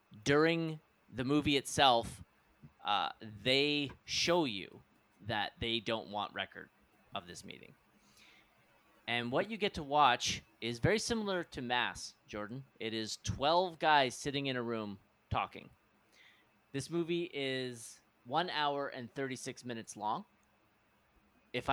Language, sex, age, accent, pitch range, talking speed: English, male, 30-49, American, 110-145 Hz, 130 wpm